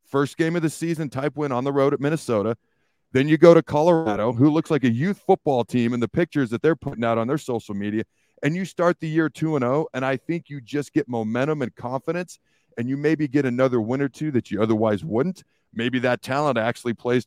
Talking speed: 235 wpm